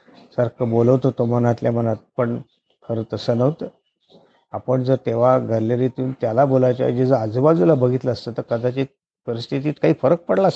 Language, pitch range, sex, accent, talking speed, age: Marathi, 120-155 Hz, male, native, 95 wpm, 50-69